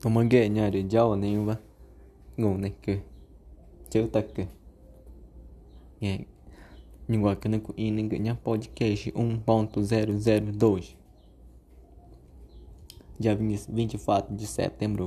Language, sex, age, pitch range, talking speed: Portuguese, male, 20-39, 65-110 Hz, 65 wpm